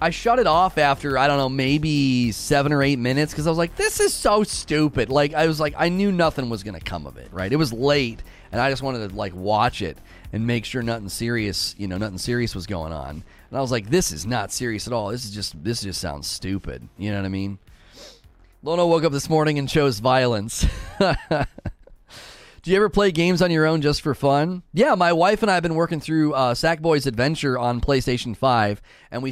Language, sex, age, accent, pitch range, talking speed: English, male, 30-49, American, 105-145 Hz, 235 wpm